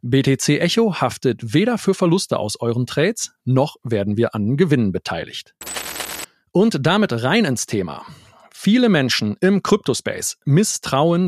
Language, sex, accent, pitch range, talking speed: German, male, German, 130-185 Hz, 135 wpm